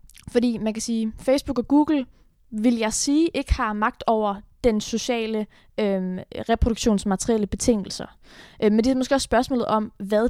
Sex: female